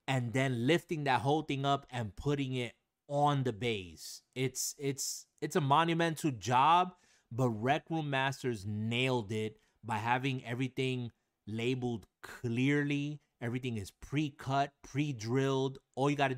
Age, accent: 30-49, American